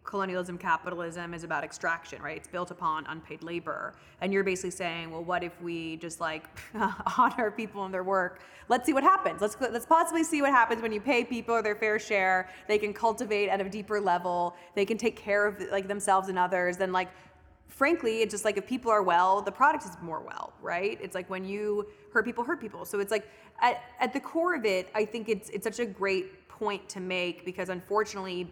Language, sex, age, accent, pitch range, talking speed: English, female, 20-39, American, 175-215 Hz, 220 wpm